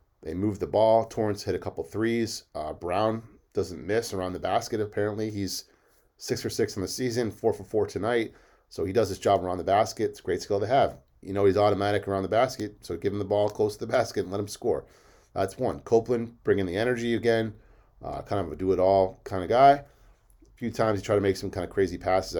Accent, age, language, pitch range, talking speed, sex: American, 30-49, English, 95-110 Hz, 230 wpm, male